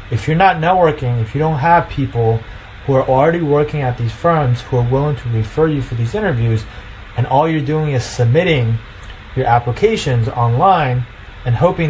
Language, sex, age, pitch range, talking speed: English, male, 30-49, 115-150 Hz, 180 wpm